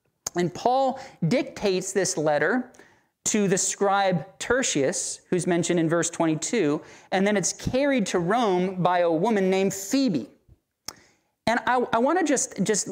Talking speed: 150 wpm